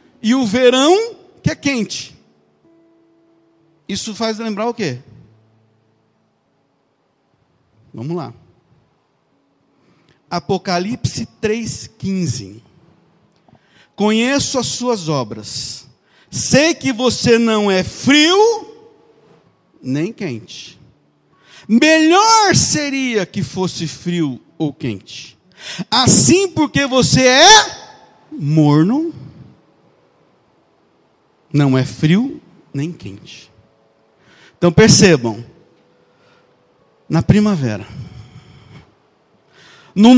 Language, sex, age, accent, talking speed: Portuguese, male, 50-69, Brazilian, 75 wpm